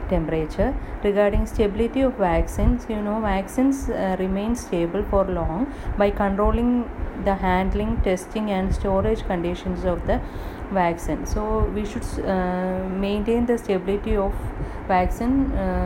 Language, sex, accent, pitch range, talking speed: English, female, Indian, 180-205 Hz, 125 wpm